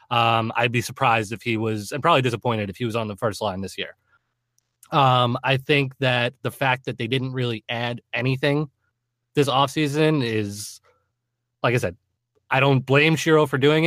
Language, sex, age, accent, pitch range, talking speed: English, male, 20-39, American, 110-135 Hz, 185 wpm